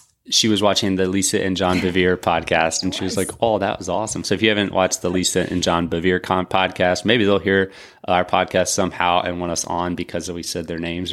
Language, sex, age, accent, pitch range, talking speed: English, male, 20-39, American, 90-105 Hz, 235 wpm